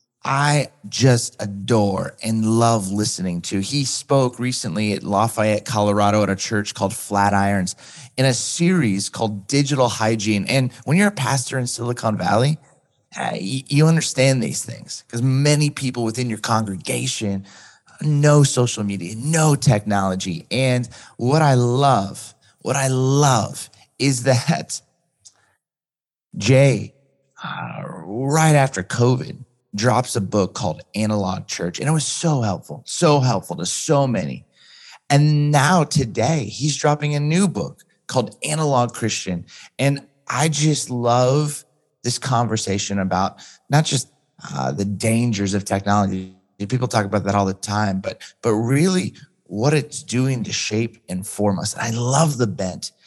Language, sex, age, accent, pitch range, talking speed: English, male, 30-49, American, 105-145 Hz, 140 wpm